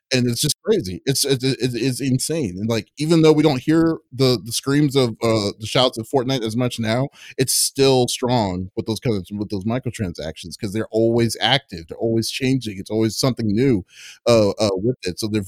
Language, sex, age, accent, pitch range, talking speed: English, male, 30-49, American, 110-135 Hz, 210 wpm